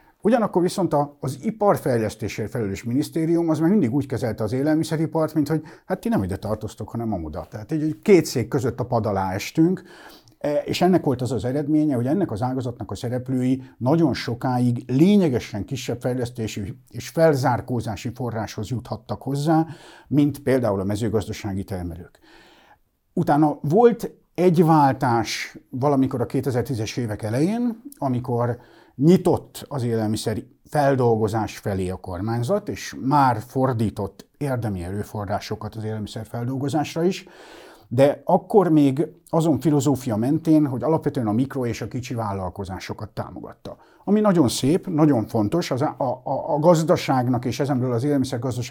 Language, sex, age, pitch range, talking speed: Hungarian, male, 50-69, 110-150 Hz, 135 wpm